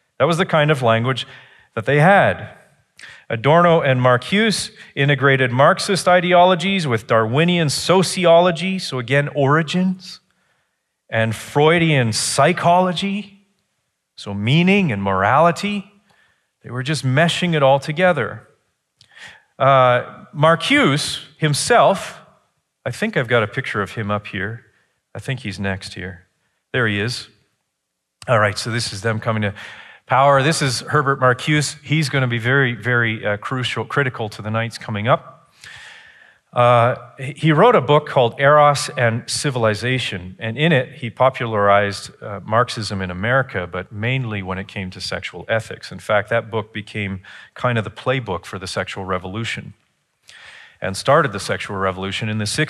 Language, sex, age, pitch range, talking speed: English, male, 40-59, 110-155 Hz, 145 wpm